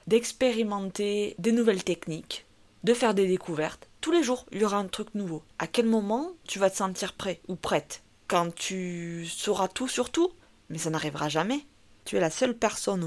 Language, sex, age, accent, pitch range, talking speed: French, female, 20-39, French, 180-220 Hz, 190 wpm